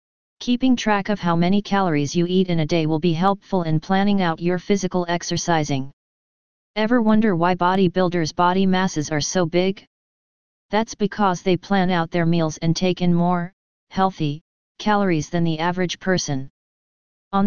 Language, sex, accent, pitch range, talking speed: English, female, American, 165-195 Hz, 160 wpm